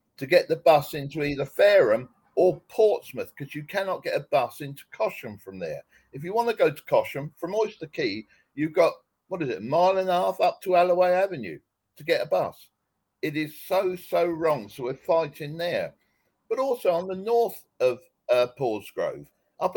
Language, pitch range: English, 145-195 Hz